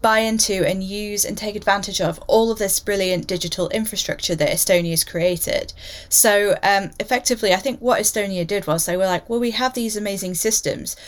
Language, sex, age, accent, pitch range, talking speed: English, female, 10-29, British, 180-215 Hz, 190 wpm